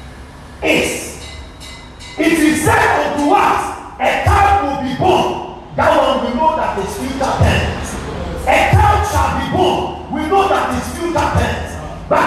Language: English